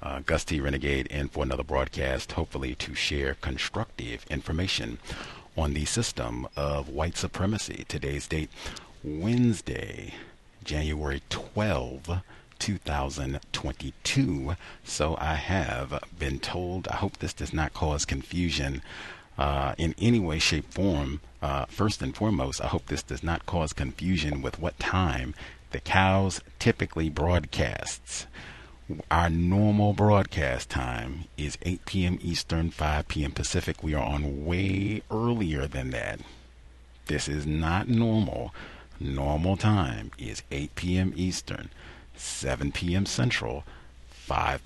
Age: 40-59